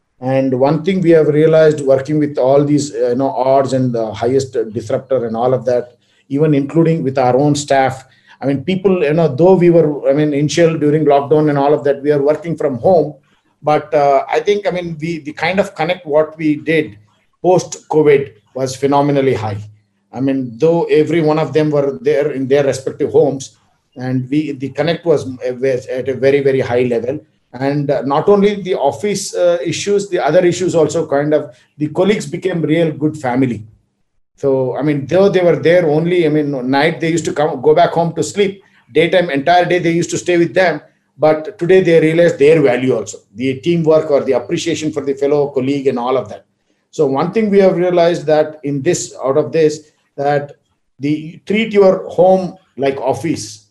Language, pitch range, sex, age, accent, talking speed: Hindi, 135-170 Hz, male, 50-69, native, 200 wpm